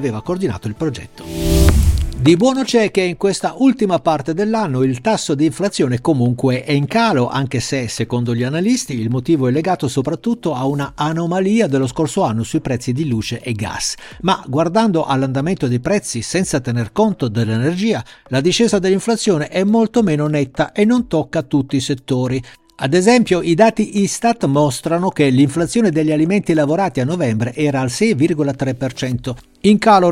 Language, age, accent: Italian, 60-79, native